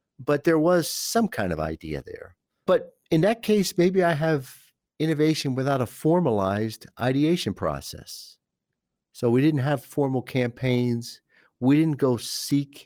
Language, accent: English, American